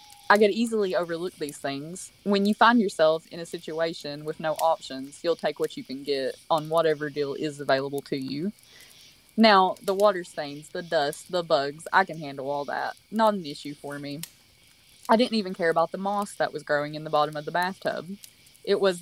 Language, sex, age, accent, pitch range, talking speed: English, female, 20-39, American, 150-180 Hz, 205 wpm